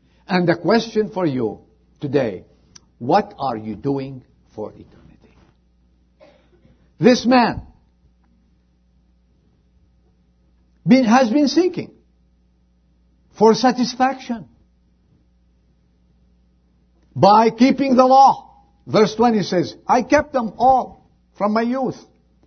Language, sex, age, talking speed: English, male, 50-69, 90 wpm